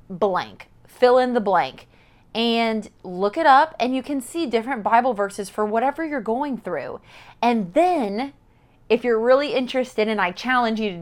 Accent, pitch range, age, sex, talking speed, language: American, 200-255 Hz, 30-49, female, 175 wpm, English